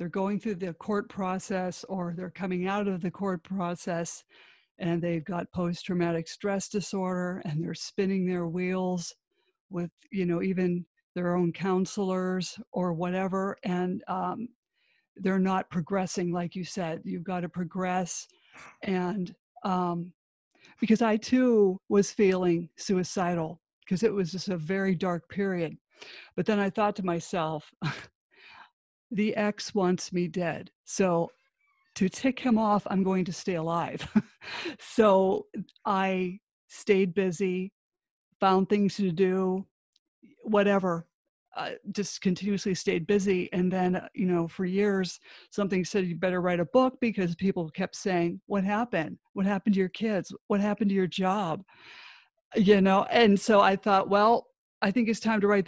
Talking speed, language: 150 wpm, English